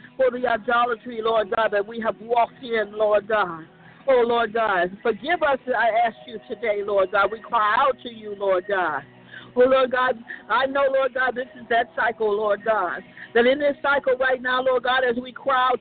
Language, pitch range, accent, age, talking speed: English, 215-250 Hz, American, 60-79, 210 wpm